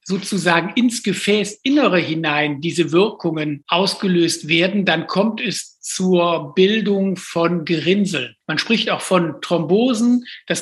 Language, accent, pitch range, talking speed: German, German, 170-215 Hz, 120 wpm